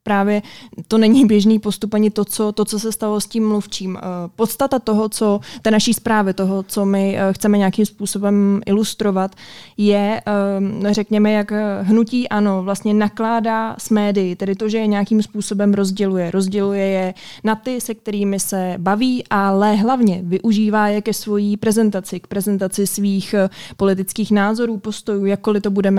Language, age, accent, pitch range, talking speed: Czech, 20-39, native, 195-215 Hz, 150 wpm